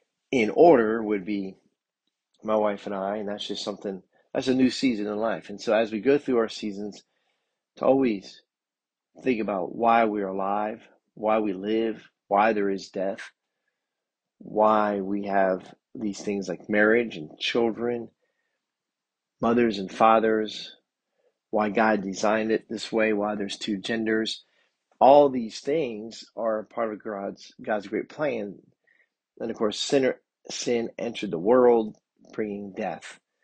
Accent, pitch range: American, 100-115 Hz